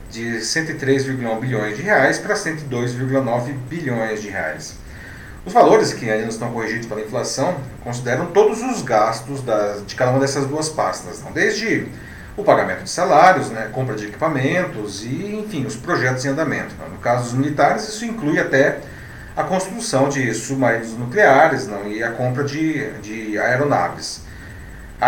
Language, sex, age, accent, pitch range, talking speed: Portuguese, male, 40-59, Brazilian, 115-150 Hz, 160 wpm